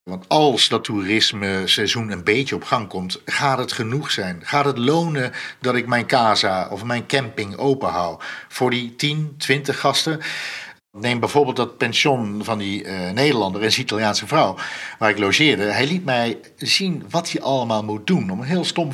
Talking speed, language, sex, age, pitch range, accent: 185 wpm, Dutch, male, 50-69, 110-140 Hz, Dutch